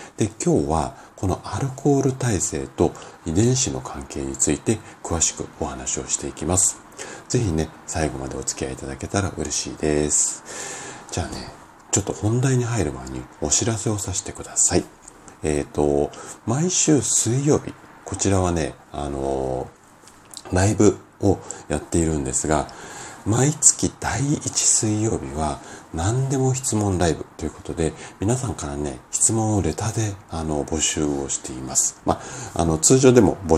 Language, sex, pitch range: Japanese, male, 75-105 Hz